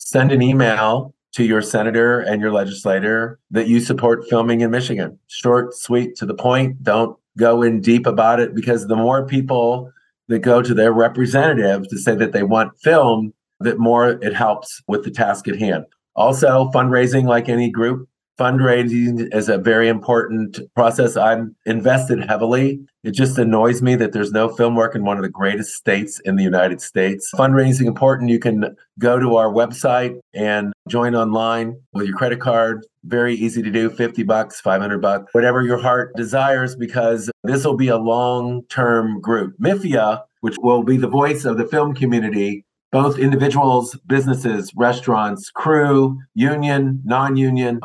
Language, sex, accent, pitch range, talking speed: English, male, American, 110-125 Hz, 170 wpm